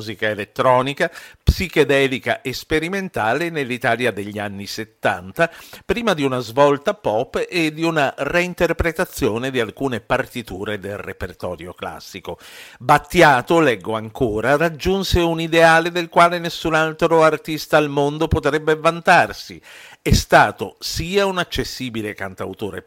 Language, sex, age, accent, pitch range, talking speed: Italian, male, 50-69, native, 110-160 Hz, 120 wpm